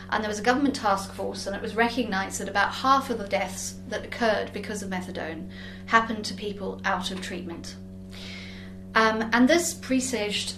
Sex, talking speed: female, 180 wpm